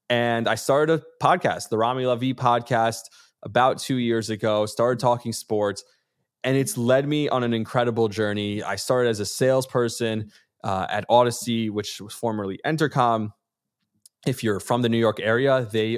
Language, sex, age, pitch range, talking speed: English, male, 20-39, 105-125 Hz, 165 wpm